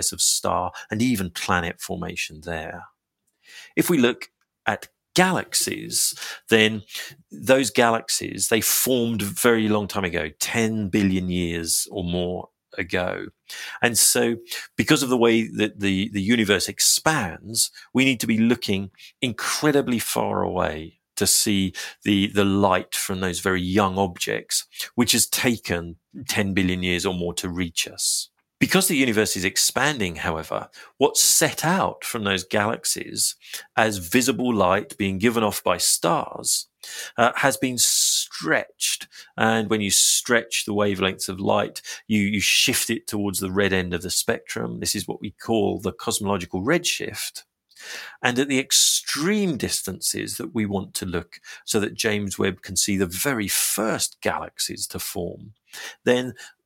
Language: English